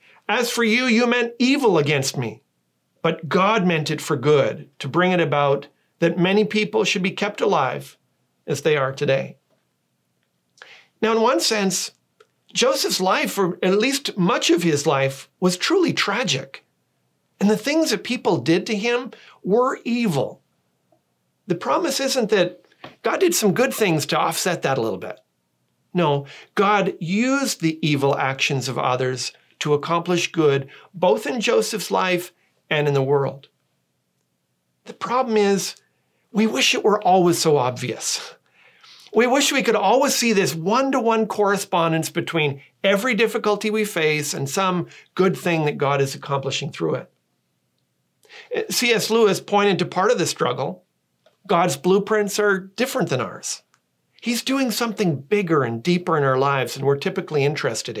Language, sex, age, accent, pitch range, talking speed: English, male, 40-59, American, 140-220 Hz, 155 wpm